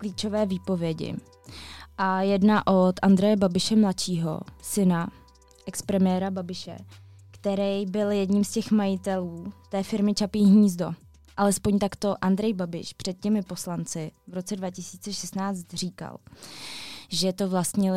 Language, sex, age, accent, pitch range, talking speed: Czech, female, 20-39, native, 185-205 Hz, 115 wpm